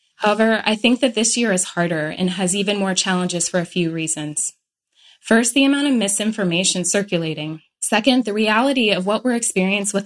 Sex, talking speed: female, 185 wpm